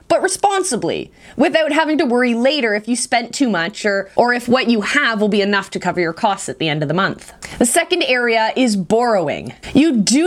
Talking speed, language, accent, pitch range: 220 wpm, English, American, 195-285 Hz